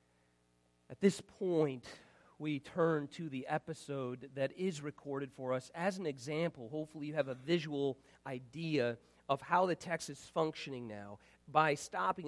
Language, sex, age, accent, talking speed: English, male, 40-59, American, 150 wpm